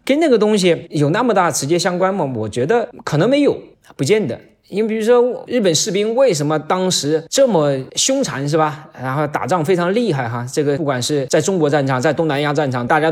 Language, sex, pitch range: Chinese, male, 135-185 Hz